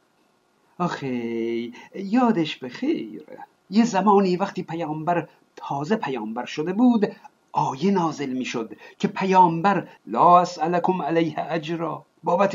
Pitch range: 155-190 Hz